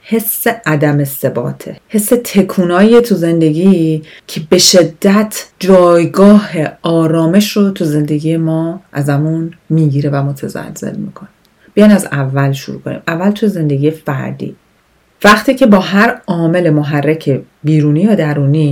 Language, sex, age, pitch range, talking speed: Persian, female, 40-59, 150-195 Hz, 125 wpm